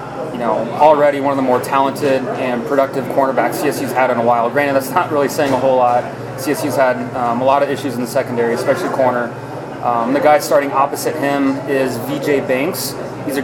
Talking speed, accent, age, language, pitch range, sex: 210 wpm, American, 30-49, English, 125-145 Hz, male